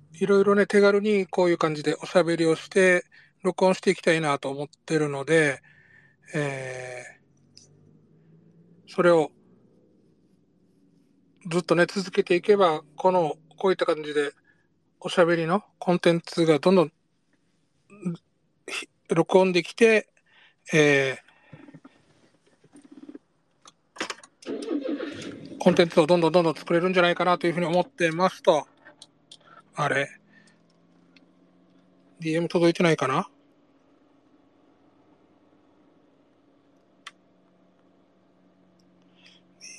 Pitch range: 145-185 Hz